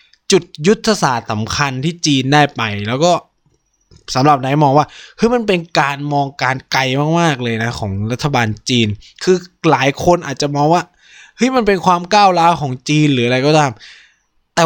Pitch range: 115-165 Hz